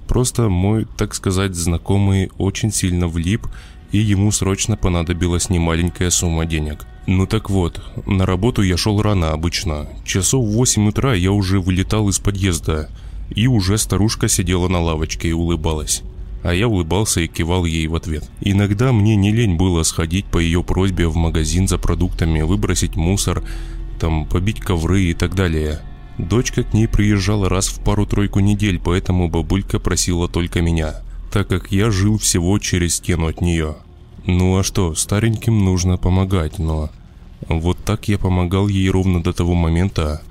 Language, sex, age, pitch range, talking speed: Russian, male, 20-39, 85-100 Hz, 160 wpm